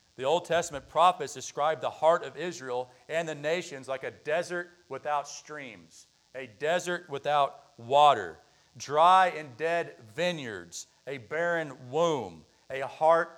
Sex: male